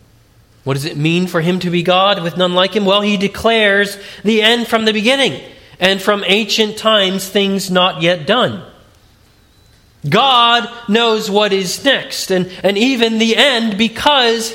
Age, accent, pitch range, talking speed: 30-49, American, 165-220 Hz, 165 wpm